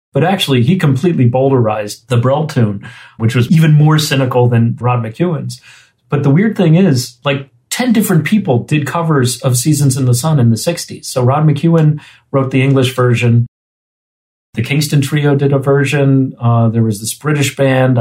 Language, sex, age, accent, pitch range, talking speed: English, male, 40-59, American, 125-150 Hz, 180 wpm